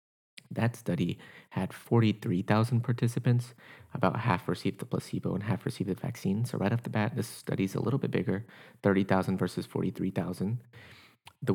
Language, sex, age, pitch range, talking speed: English, male, 30-49, 95-110 Hz, 160 wpm